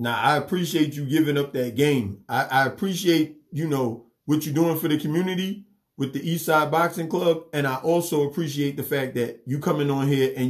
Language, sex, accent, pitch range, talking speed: English, male, American, 140-180 Hz, 210 wpm